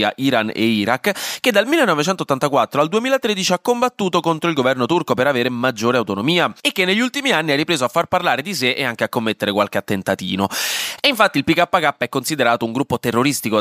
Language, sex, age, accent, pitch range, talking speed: Italian, male, 20-39, native, 115-190 Hz, 200 wpm